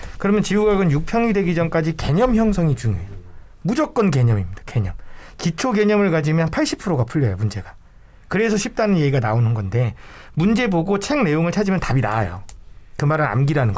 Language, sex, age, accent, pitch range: Korean, male, 40-59, native, 115-185 Hz